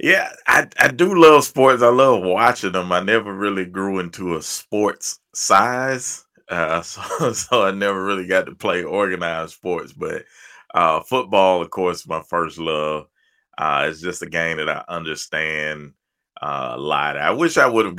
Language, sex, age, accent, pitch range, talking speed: English, male, 30-49, American, 80-95 Hz, 175 wpm